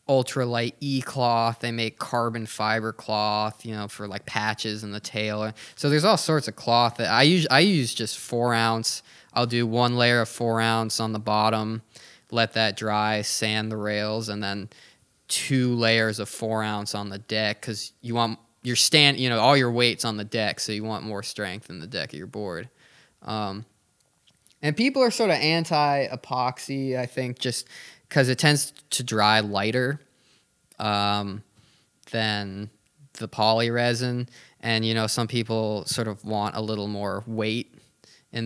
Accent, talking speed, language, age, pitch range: American, 180 wpm, English, 20-39, 105-125 Hz